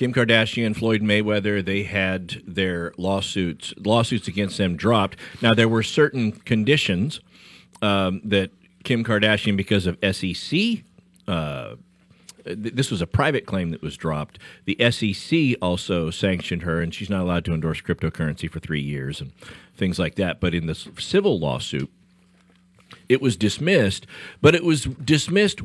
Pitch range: 95-125 Hz